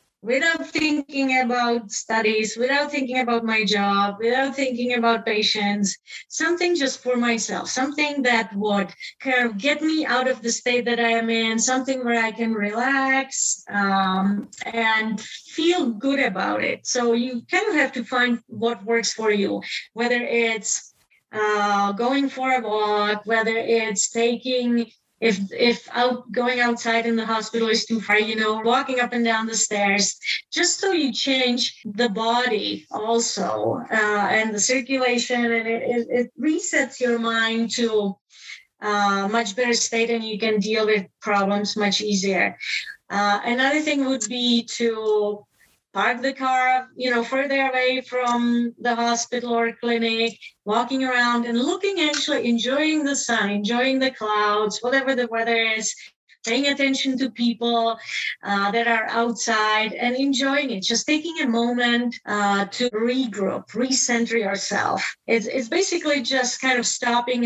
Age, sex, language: 30-49, female, English